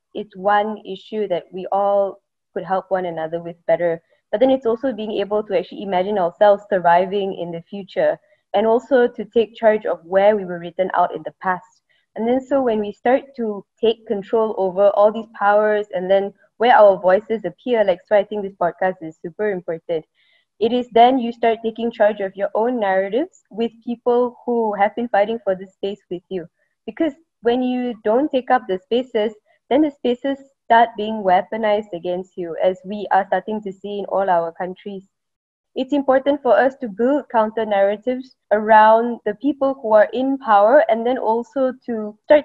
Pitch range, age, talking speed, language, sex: 195-240 Hz, 20-39, 190 wpm, English, female